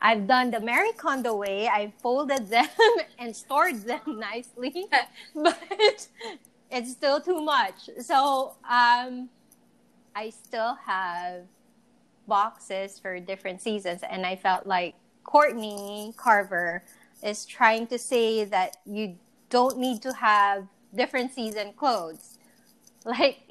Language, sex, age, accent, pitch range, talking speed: English, female, 20-39, Filipino, 200-255 Hz, 120 wpm